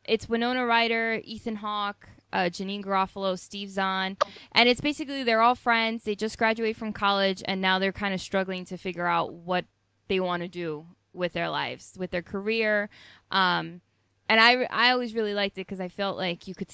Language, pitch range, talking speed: English, 165-195 Hz, 195 wpm